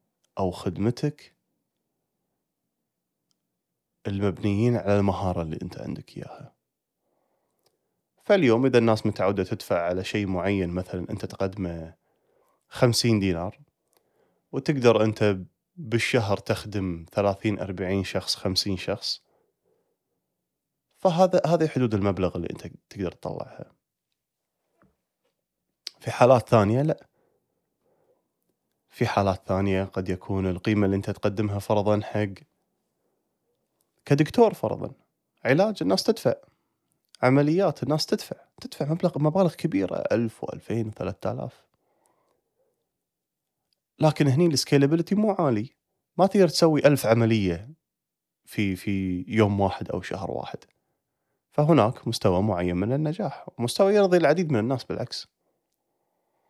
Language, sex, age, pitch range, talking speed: Arabic, male, 20-39, 95-145 Hz, 105 wpm